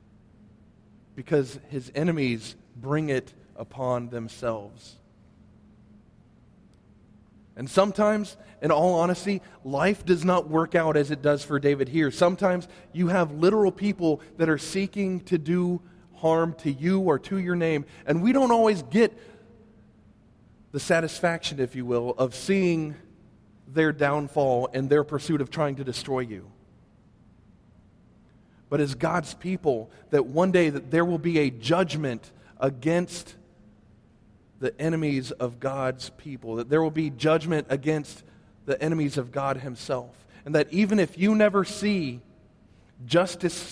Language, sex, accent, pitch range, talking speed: English, male, American, 125-175 Hz, 135 wpm